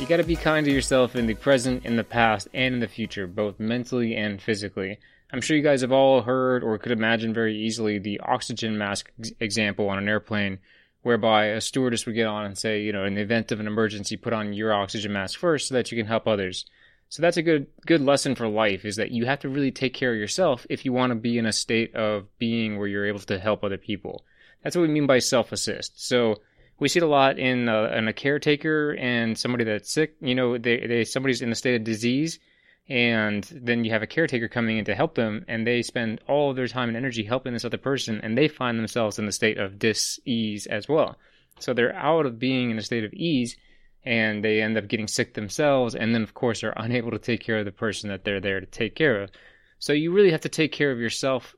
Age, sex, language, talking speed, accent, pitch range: 20-39, male, English, 245 wpm, American, 110-130 Hz